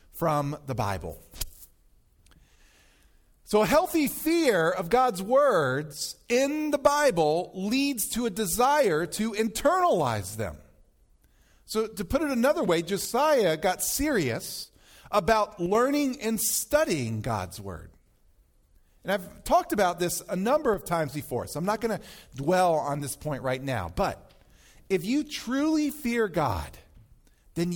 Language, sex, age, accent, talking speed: English, male, 40-59, American, 135 wpm